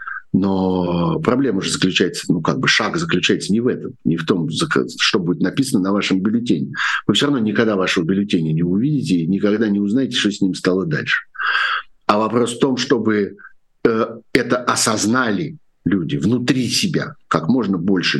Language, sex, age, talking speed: Russian, male, 50-69, 170 wpm